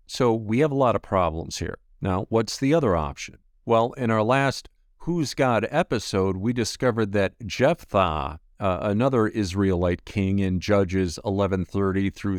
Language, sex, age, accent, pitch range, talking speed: English, male, 50-69, American, 100-145 Hz, 155 wpm